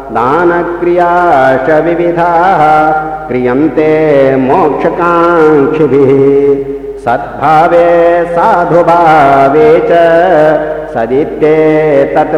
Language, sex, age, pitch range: Hindi, male, 50-69, 135-170 Hz